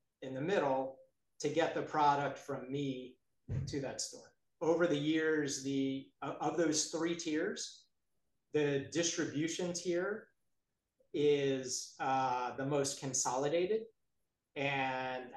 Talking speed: 115 wpm